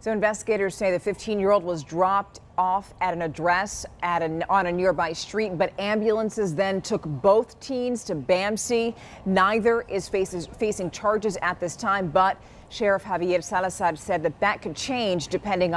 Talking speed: 170 wpm